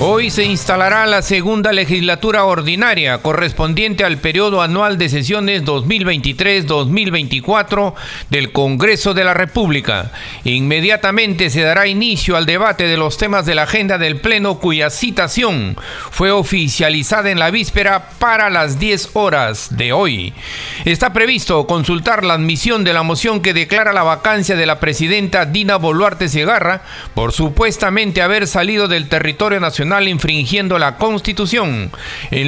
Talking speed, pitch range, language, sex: 140 wpm, 155-205 Hz, Spanish, male